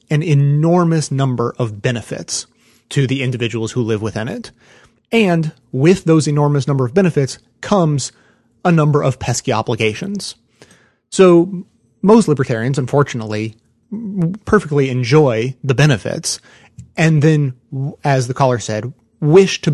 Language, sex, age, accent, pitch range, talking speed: English, male, 30-49, American, 125-160 Hz, 125 wpm